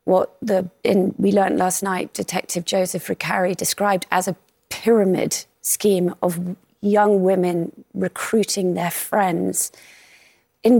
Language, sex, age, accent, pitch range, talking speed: English, female, 30-49, British, 185-205 Hz, 120 wpm